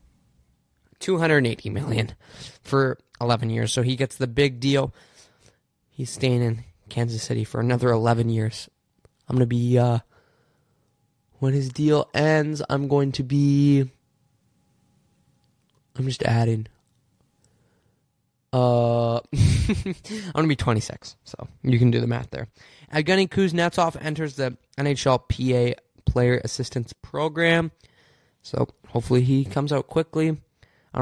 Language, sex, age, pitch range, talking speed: English, male, 20-39, 120-140 Hz, 125 wpm